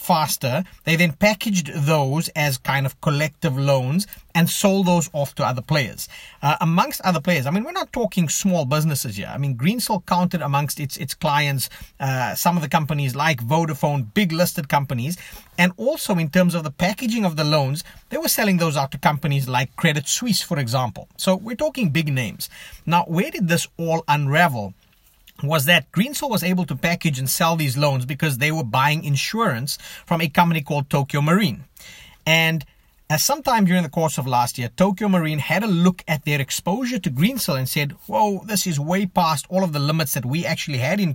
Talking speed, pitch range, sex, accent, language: 200 wpm, 140-185 Hz, male, South African, English